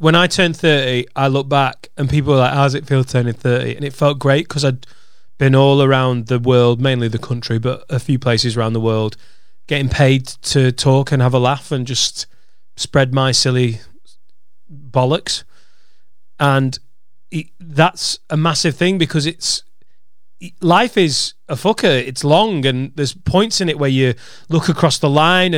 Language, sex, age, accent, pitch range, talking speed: English, male, 30-49, British, 130-165 Hz, 180 wpm